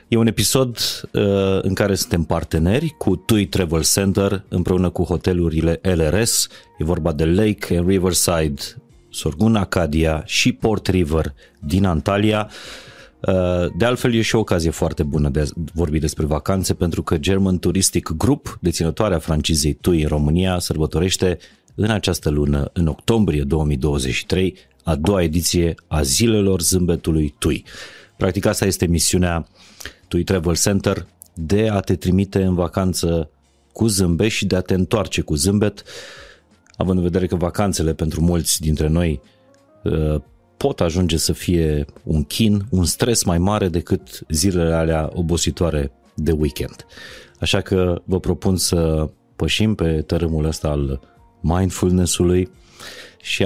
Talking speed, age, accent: 140 wpm, 30-49, native